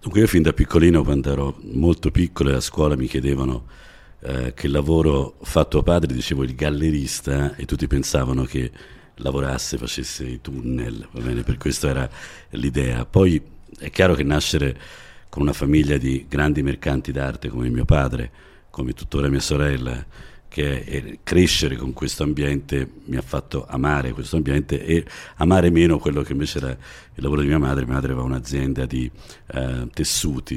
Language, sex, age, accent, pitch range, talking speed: Italian, male, 50-69, native, 65-80 Hz, 170 wpm